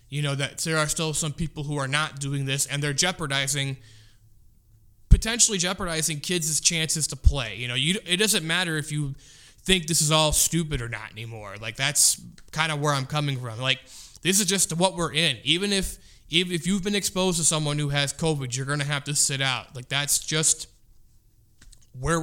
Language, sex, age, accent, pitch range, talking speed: English, male, 20-39, American, 130-170 Hz, 205 wpm